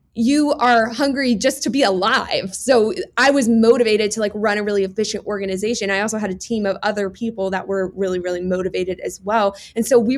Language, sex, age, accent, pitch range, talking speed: English, female, 20-39, American, 200-250 Hz, 210 wpm